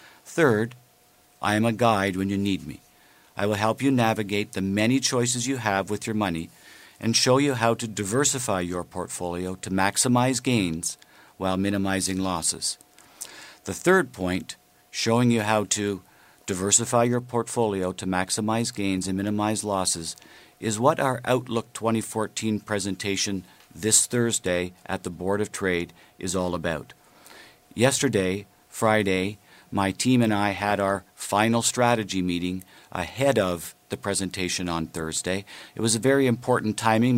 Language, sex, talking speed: English, male, 145 wpm